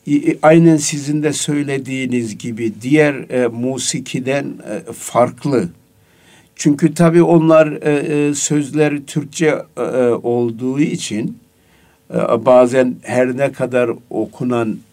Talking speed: 100 wpm